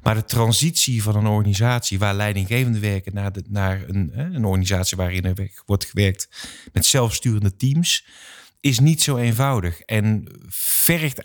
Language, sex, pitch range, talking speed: Dutch, male, 100-125 Hz, 145 wpm